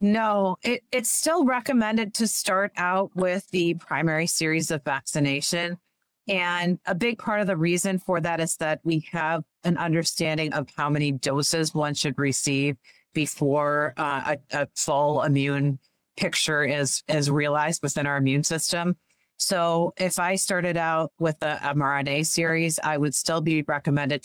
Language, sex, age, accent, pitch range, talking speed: English, female, 40-59, American, 145-175 Hz, 155 wpm